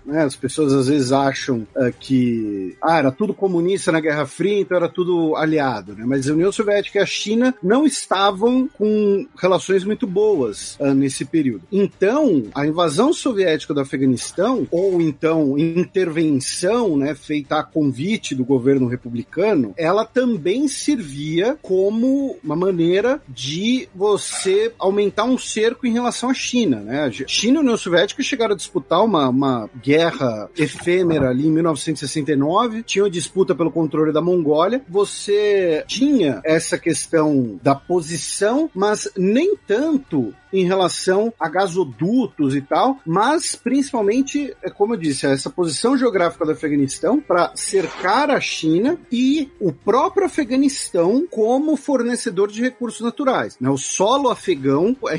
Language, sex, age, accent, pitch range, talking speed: Portuguese, male, 50-69, Brazilian, 150-235 Hz, 140 wpm